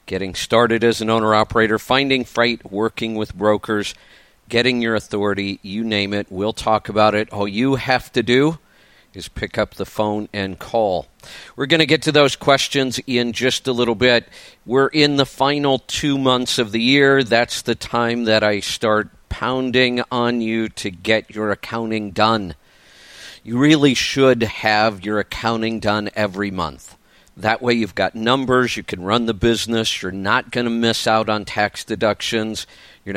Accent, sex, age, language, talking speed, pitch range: American, male, 50-69, English, 175 wpm, 105-125 Hz